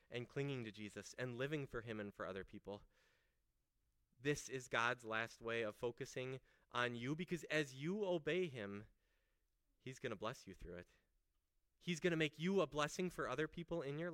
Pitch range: 100-150 Hz